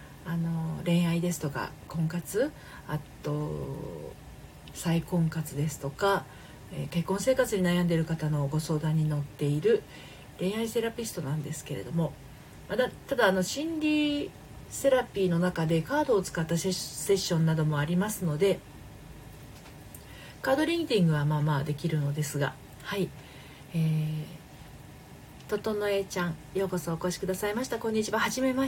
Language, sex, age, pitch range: Japanese, female, 40-59, 155-205 Hz